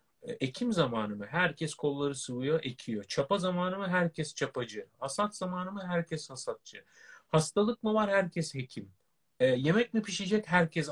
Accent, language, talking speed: native, Turkish, 150 wpm